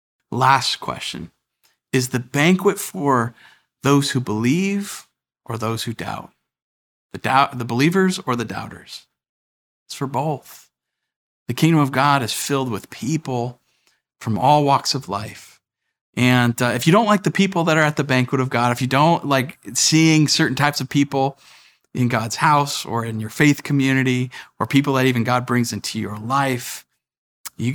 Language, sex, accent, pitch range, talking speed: English, male, American, 115-135 Hz, 170 wpm